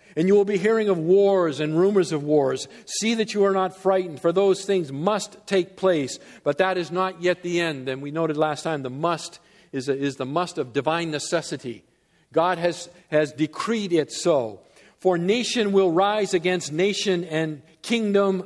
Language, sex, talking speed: English, male, 190 wpm